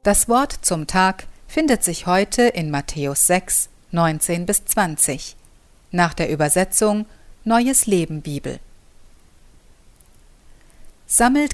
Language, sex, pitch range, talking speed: German, female, 160-210 Hz, 85 wpm